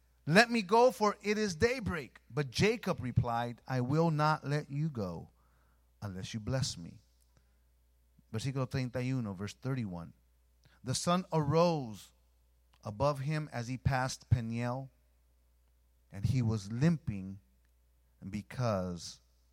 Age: 30-49